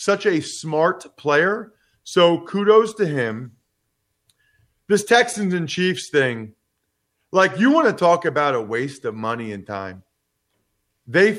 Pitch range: 145-215 Hz